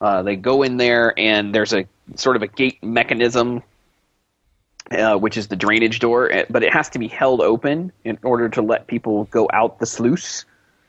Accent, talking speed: American, 195 wpm